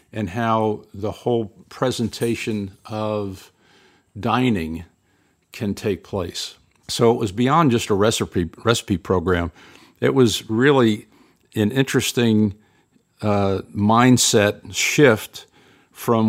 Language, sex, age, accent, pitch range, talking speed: English, male, 50-69, American, 100-120 Hz, 105 wpm